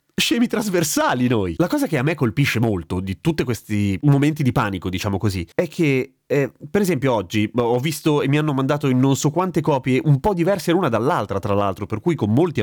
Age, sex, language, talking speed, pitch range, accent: 30-49, male, Italian, 220 wpm, 110-160 Hz, native